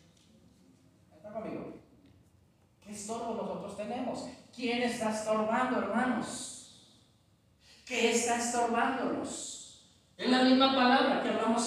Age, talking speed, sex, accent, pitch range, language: 50-69, 95 wpm, male, Mexican, 235-280 Hz, Spanish